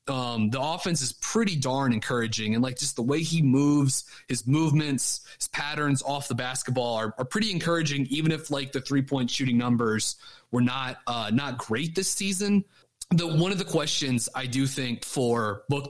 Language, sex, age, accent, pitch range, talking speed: English, male, 30-49, American, 120-140 Hz, 190 wpm